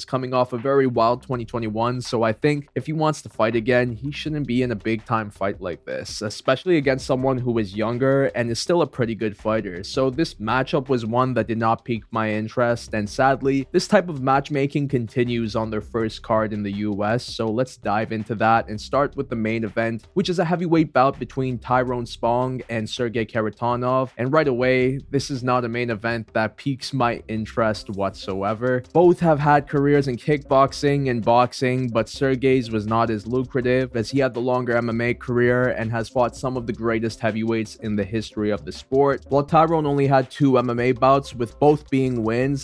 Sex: male